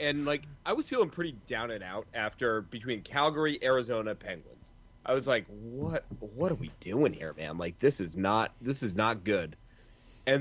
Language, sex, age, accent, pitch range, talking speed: English, male, 30-49, American, 110-140 Hz, 200 wpm